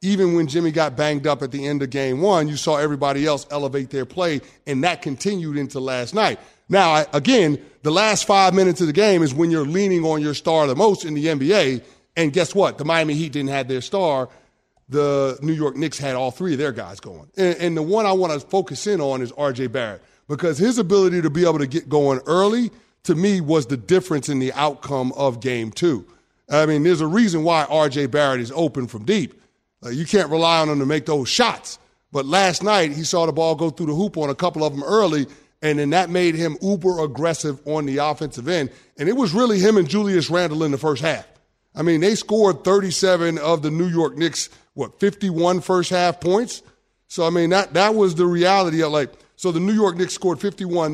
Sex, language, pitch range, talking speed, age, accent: male, English, 145-185 Hz, 225 wpm, 30-49, American